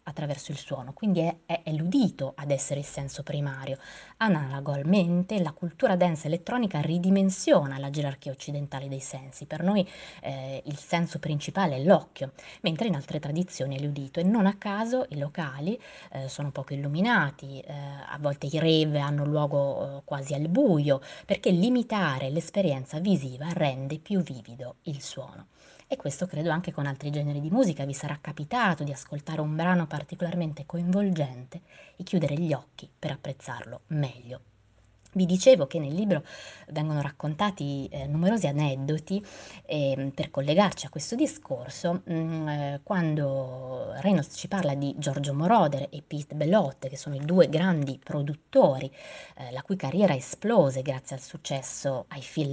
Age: 20-39